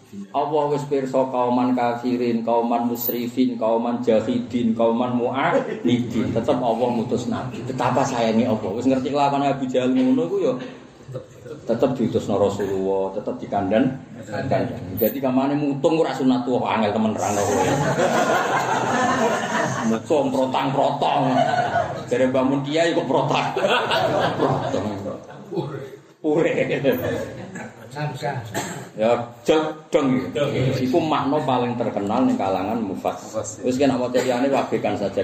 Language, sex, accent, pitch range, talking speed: Indonesian, male, native, 120-150 Hz, 65 wpm